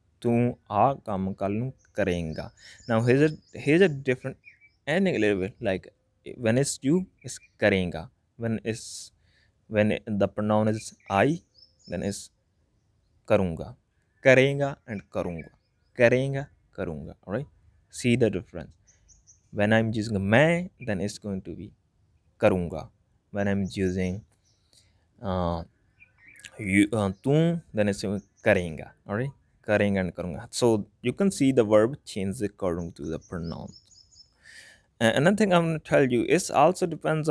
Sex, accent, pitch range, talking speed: male, Indian, 95-120 Hz, 130 wpm